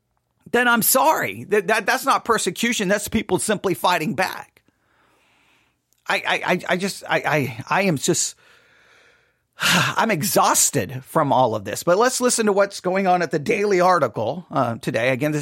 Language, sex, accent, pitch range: English, male, American, 150-205 Hz